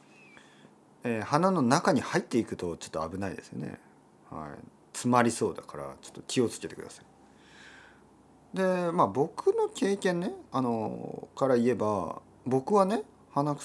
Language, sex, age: Japanese, male, 40-59